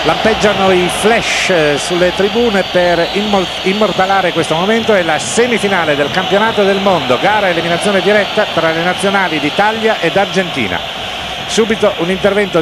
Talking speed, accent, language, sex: 140 wpm, native, Italian, male